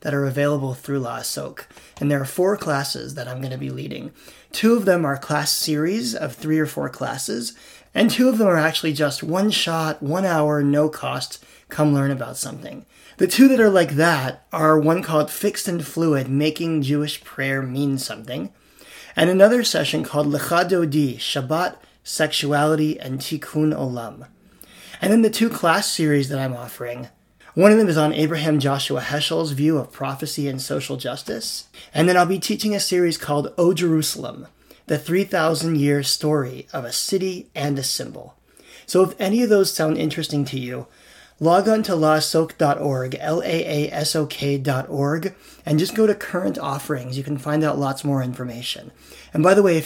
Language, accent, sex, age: English, American, male, 30-49